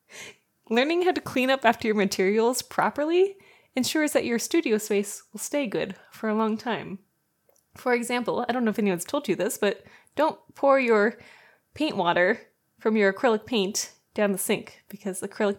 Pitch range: 190-230 Hz